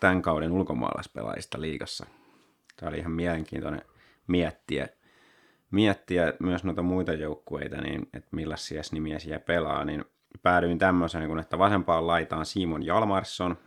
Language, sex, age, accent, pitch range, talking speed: Finnish, male, 30-49, native, 80-95 Hz, 120 wpm